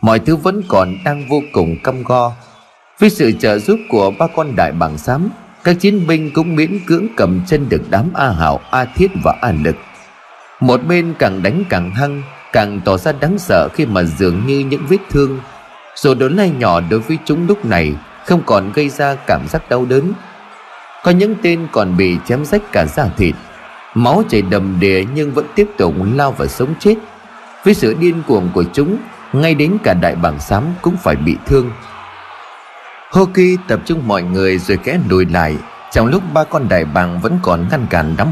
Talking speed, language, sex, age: 200 wpm, Vietnamese, male, 30-49